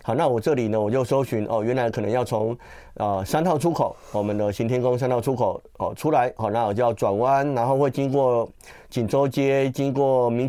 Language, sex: Chinese, male